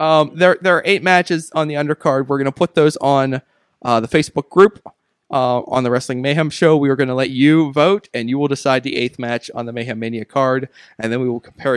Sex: male